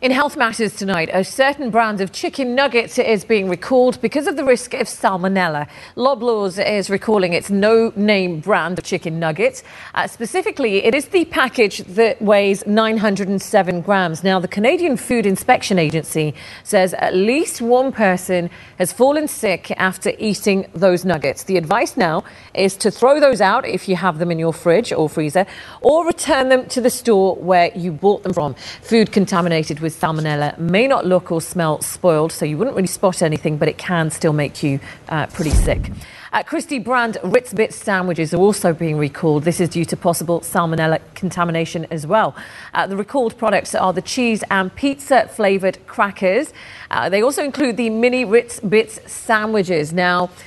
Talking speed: 175 wpm